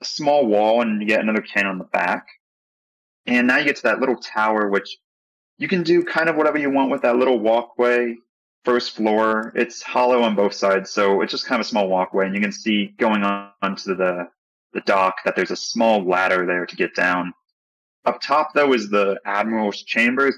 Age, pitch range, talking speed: 30-49, 95-115 Hz, 215 wpm